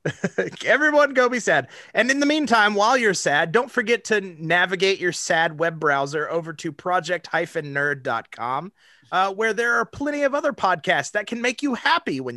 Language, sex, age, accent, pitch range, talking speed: English, male, 30-49, American, 155-205 Hz, 180 wpm